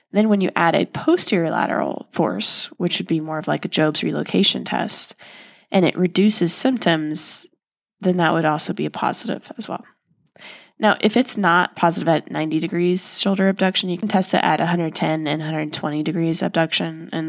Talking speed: 180 wpm